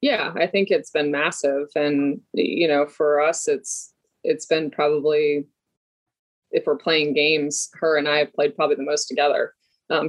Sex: female